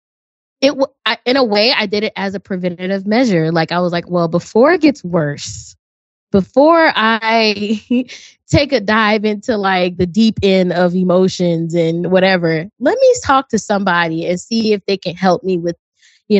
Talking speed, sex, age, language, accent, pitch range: 175 wpm, female, 20-39, English, American, 180-225 Hz